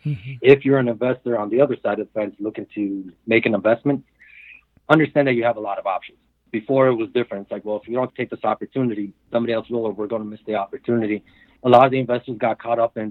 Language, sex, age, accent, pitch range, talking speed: English, male, 30-49, American, 110-120 Hz, 255 wpm